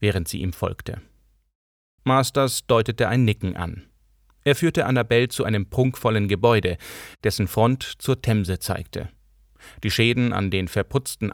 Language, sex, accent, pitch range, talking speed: German, male, German, 100-125 Hz, 140 wpm